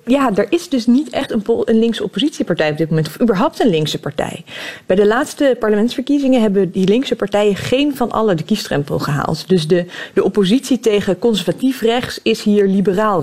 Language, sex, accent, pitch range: Dutch, female, Dutch, 160-220 Hz